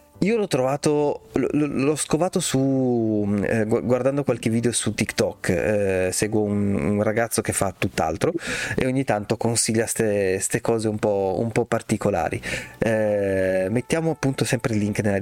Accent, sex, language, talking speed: native, male, Italian, 150 wpm